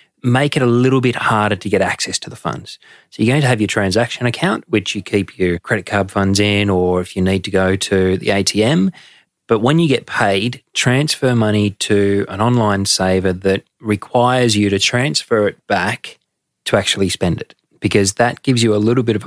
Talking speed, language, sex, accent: 210 wpm, English, male, Australian